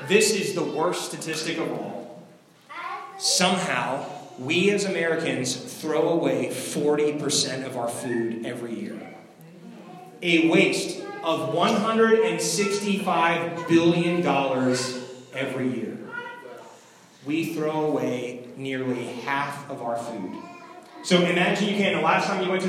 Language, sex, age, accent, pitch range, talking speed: English, male, 30-49, American, 155-215 Hz, 115 wpm